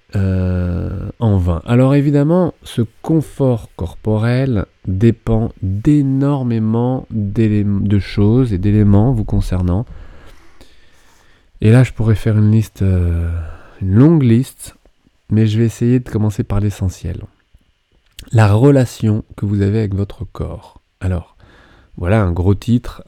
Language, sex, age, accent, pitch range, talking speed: French, male, 20-39, French, 95-115 Hz, 125 wpm